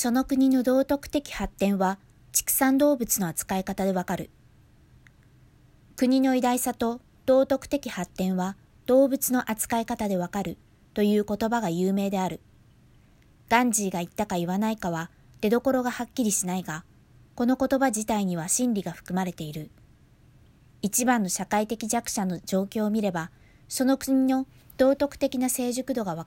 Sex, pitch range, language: female, 170-245 Hz, Japanese